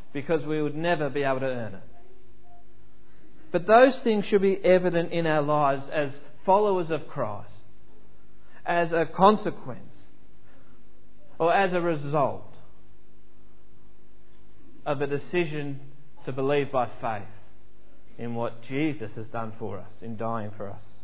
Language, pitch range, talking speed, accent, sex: English, 120-175 Hz, 135 wpm, Australian, male